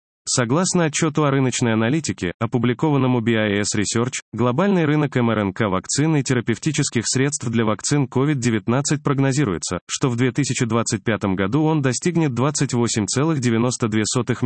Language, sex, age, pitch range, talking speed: Russian, male, 20-39, 115-150 Hz, 110 wpm